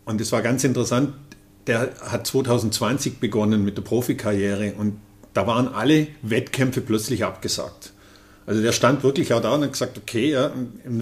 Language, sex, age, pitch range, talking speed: German, male, 50-69, 105-130 Hz, 165 wpm